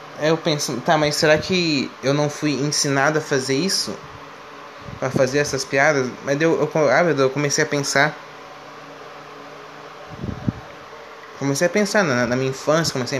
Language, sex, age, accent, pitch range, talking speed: Portuguese, male, 20-39, Brazilian, 140-165 Hz, 140 wpm